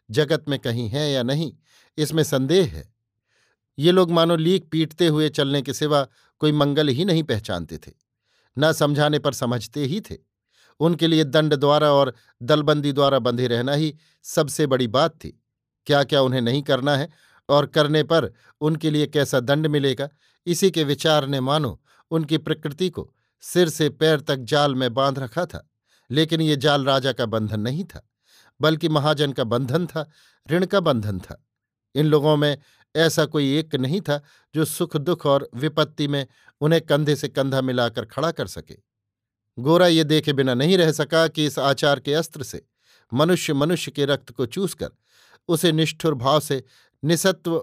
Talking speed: 175 wpm